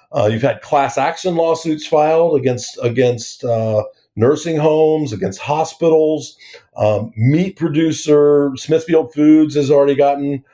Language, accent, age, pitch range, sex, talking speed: English, American, 50-69, 115-150 Hz, male, 125 wpm